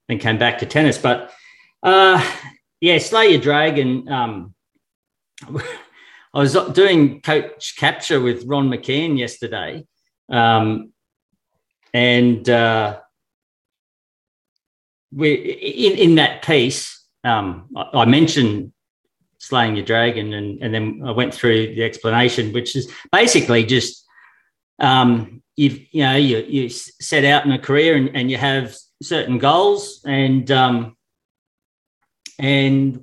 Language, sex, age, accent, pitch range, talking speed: English, male, 40-59, Australian, 120-150 Hz, 120 wpm